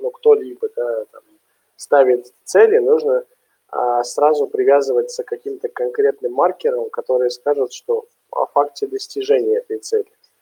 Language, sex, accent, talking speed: Russian, male, native, 115 wpm